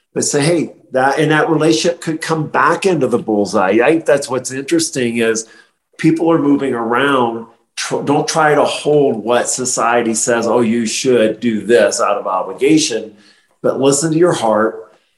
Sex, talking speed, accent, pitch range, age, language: male, 170 wpm, American, 115-145 Hz, 40-59, English